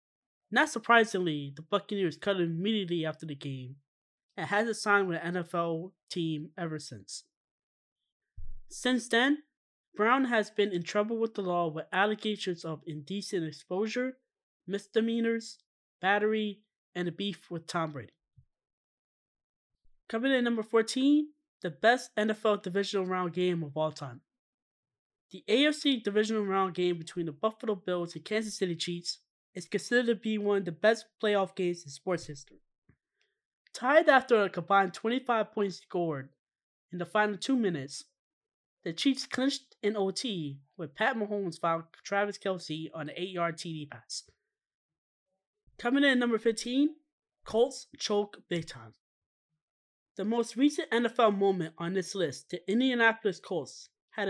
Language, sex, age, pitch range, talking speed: English, male, 20-39, 170-225 Hz, 145 wpm